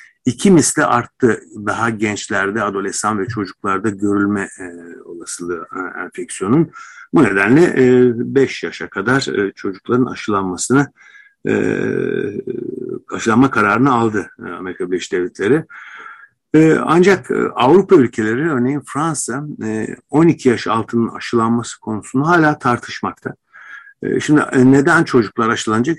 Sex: male